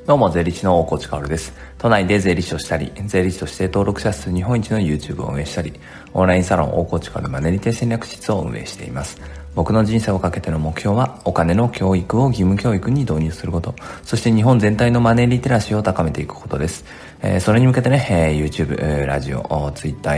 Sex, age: male, 40-59